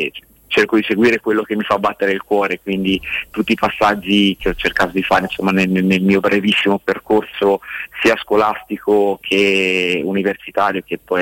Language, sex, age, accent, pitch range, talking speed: Italian, male, 30-49, native, 95-105 Hz, 160 wpm